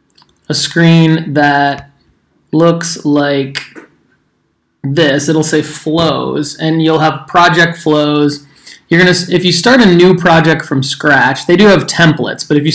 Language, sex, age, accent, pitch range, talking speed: English, male, 20-39, American, 140-170 Hz, 145 wpm